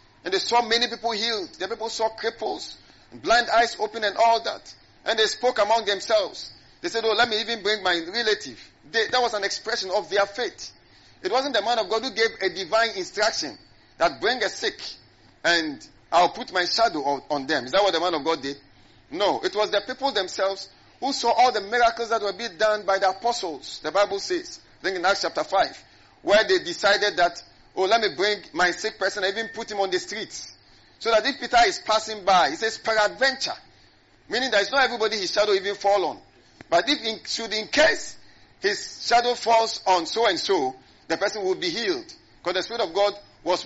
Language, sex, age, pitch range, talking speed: English, male, 50-69, 190-240 Hz, 215 wpm